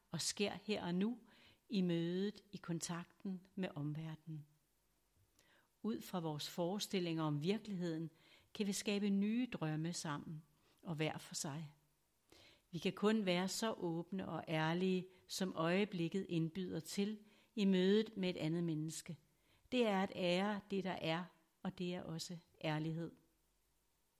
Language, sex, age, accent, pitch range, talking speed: Danish, female, 60-79, native, 160-195 Hz, 140 wpm